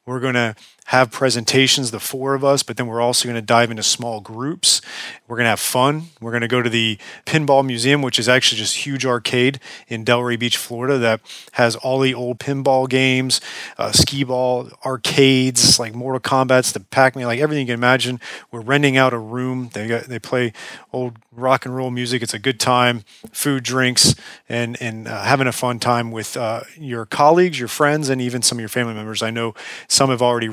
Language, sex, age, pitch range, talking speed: English, male, 30-49, 115-135 Hz, 210 wpm